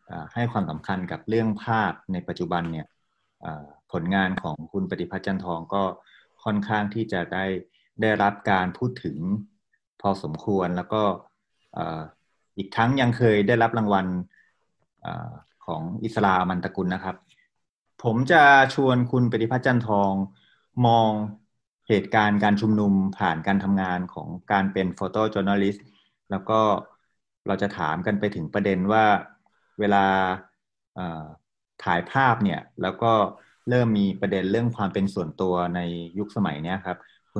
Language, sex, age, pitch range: Thai, male, 30-49, 90-110 Hz